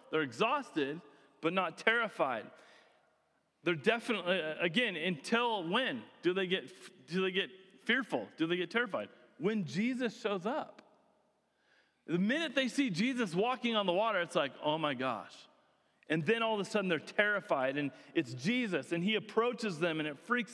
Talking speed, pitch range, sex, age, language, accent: 165 wpm, 165-225 Hz, male, 40-59, English, American